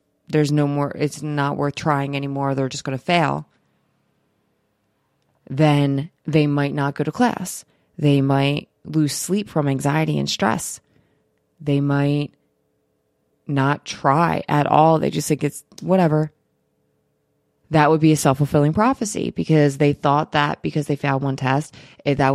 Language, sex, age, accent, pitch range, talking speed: English, female, 20-39, American, 140-155 Hz, 150 wpm